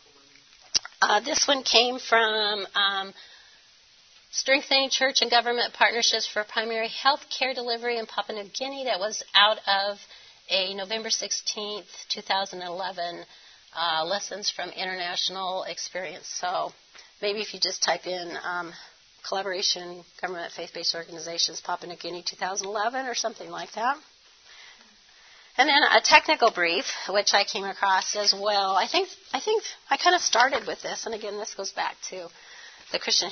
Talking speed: 150 wpm